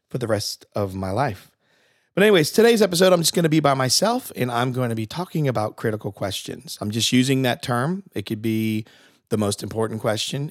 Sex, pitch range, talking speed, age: male, 115-145 Hz, 205 wpm, 40-59